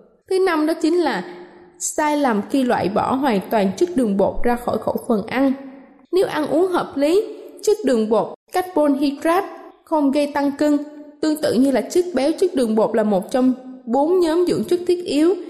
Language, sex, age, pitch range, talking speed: Vietnamese, female, 20-39, 245-340 Hz, 200 wpm